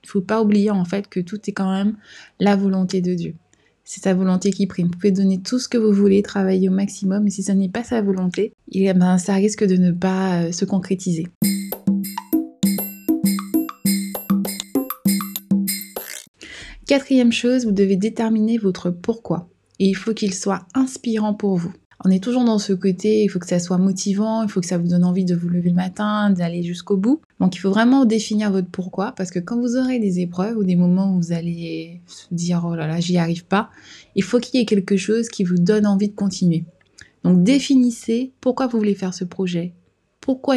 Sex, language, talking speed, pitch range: female, French, 205 wpm, 185-220 Hz